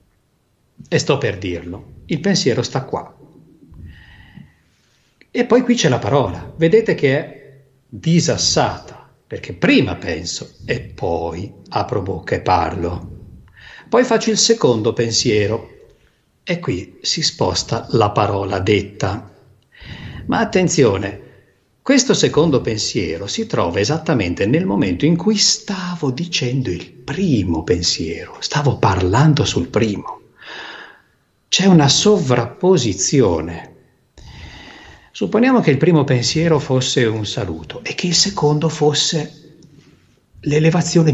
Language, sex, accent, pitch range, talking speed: Italian, male, native, 115-165 Hz, 110 wpm